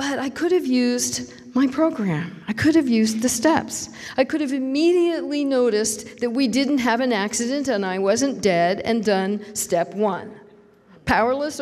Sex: female